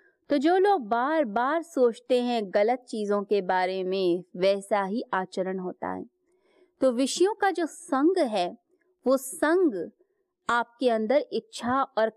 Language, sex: Hindi, female